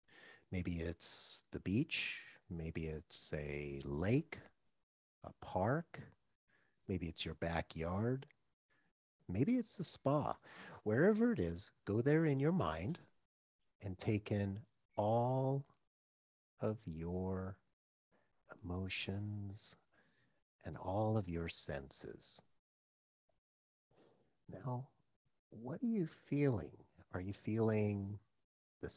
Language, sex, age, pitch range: English, male, 40-59, 80-115 Hz